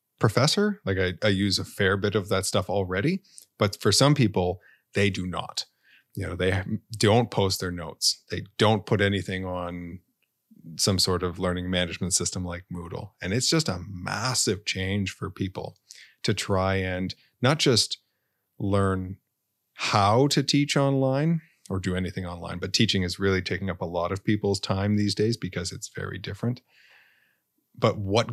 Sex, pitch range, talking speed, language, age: male, 95-110 Hz, 170 wpm, English, 30-49